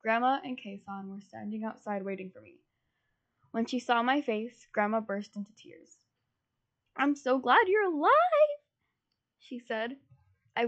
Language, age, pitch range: English, 10-29, 210-245 Hz